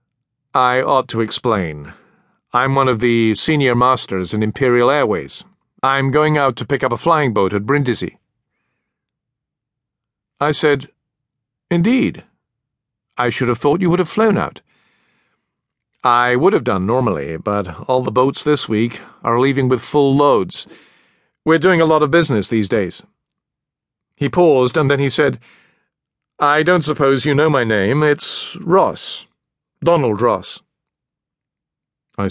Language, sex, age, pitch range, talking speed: English, male, 50-69, 115-155 Hz, 145 wpm